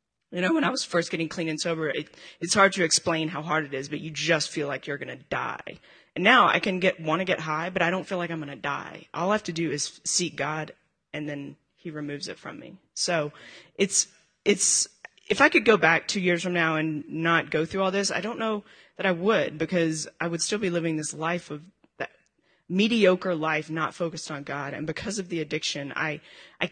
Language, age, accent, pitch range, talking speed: English, 30-49, American, 155-190 Hz, 245 wpm